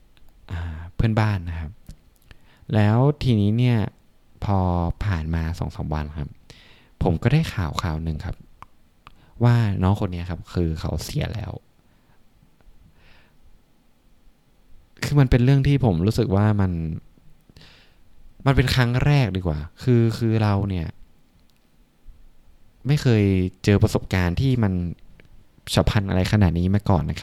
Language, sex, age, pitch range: Thai, male, 20-39, 85-110 Hz